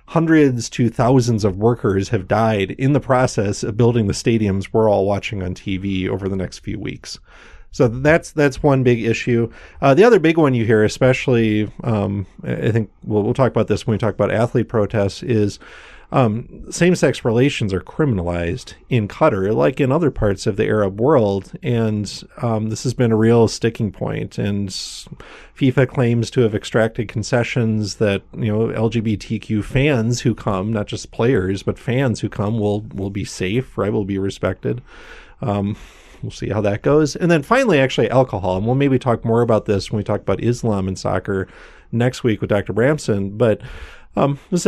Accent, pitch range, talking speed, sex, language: American, 105-130 Hz, 185 wpm, male, English